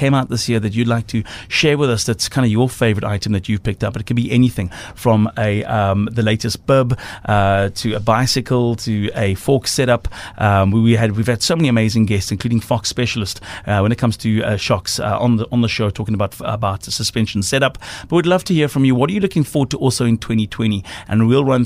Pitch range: 105-125 Hz